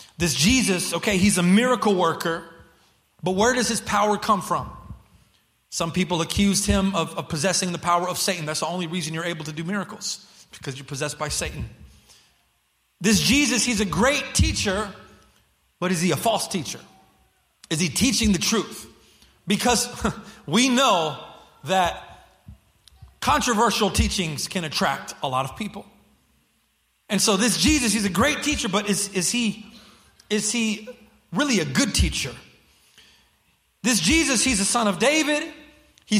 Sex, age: male, 30-49